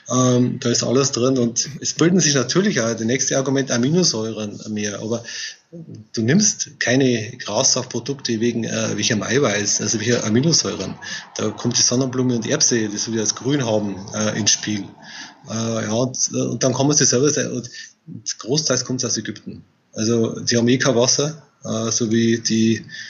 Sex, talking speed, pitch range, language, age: male, 175 wpm, 110-130 Hz, German, 20-39